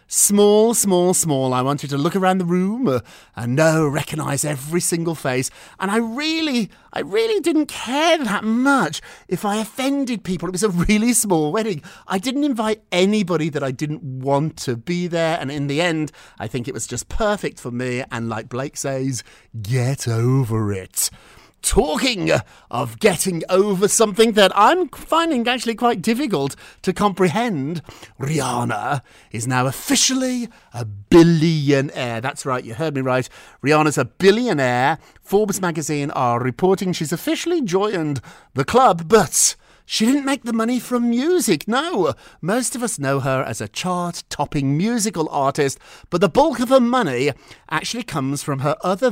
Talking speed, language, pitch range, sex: 165 wpm, English, 135-225 Hz, male